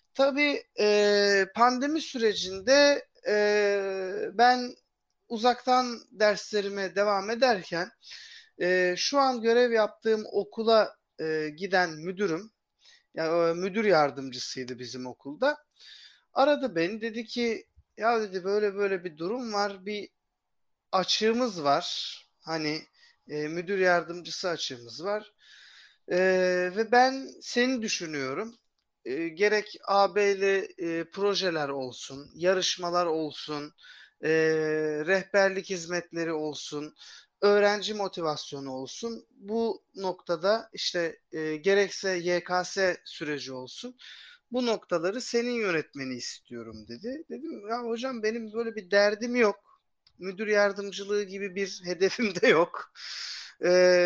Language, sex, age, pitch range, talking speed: Turkish, male, 40-59, 170-235 Hz, 105 wpm